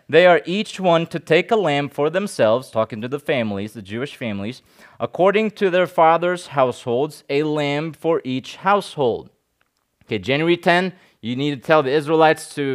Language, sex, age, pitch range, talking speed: English, male, 30-49, 130-175 Hz, 175 wpm